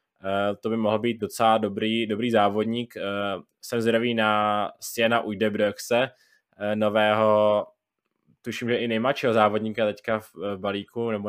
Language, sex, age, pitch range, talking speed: Czech, male, 20-39, 105-120 Hz, 150 wpm